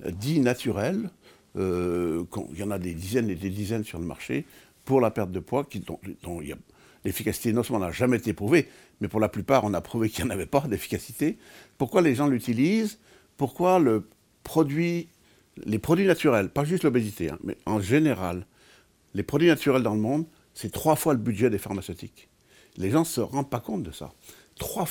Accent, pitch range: French, 95-130 Hz